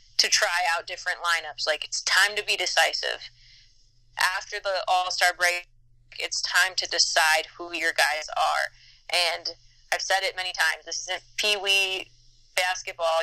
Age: 20-39